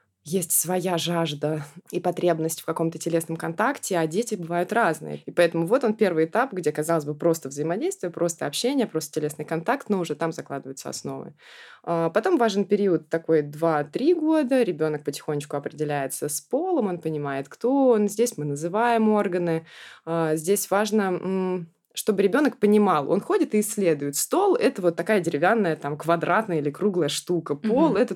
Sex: female